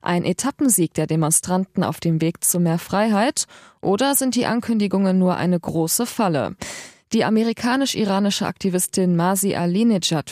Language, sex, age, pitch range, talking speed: German, female, 20-39, 165-210 Hz, 135 wpm